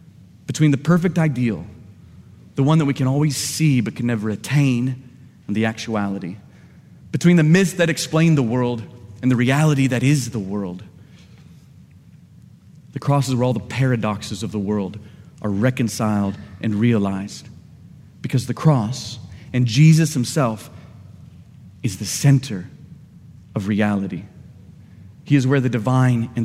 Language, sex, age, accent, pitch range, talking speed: English, male, 30-49, American, 115-160 Hz, 145 wpm